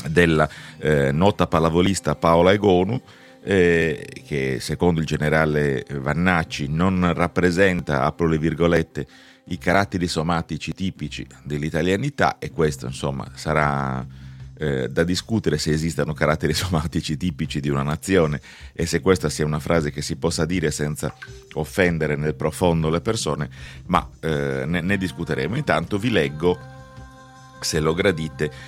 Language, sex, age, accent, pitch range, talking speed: Italian, male, 30-49, native, 75-95 Hz, 135 wpm